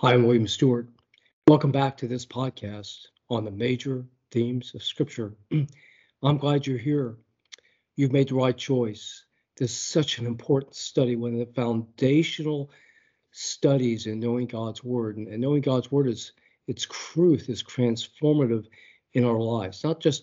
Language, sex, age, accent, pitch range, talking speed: English, male, 50-69, American, 115-135 Hz, 155 wpm